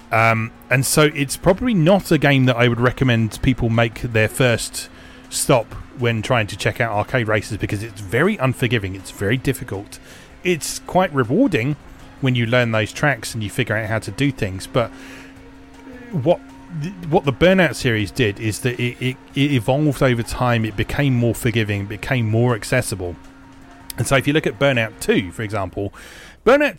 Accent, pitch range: British, 105-140 Hz